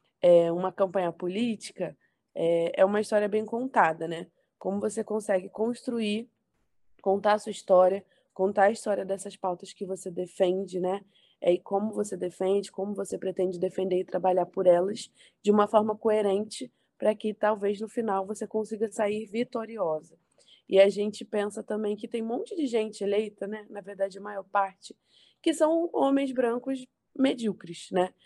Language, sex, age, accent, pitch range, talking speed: Portuguese, female, 20-39, Brazilian, 195-225 Hz, 160 wpm